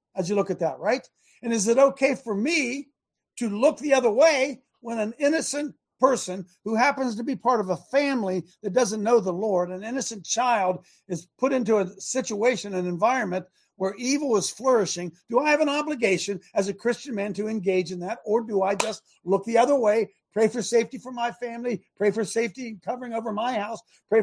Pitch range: 185-245 Hz